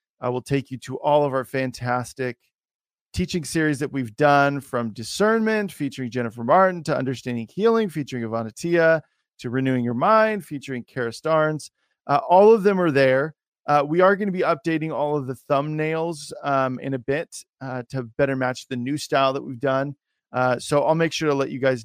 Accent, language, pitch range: American, English, 125-150 Hz